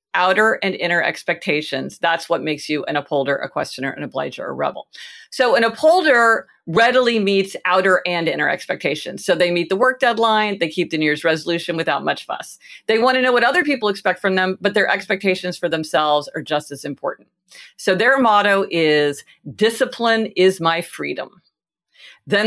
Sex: female